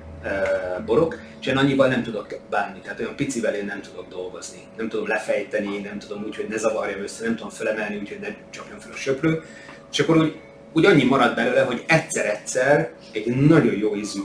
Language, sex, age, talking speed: Hungarian, male, 30-49, 200 wpm